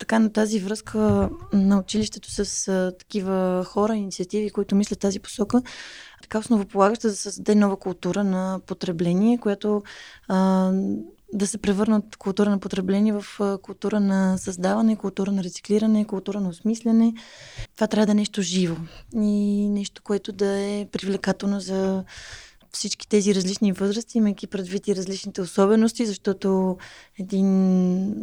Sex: female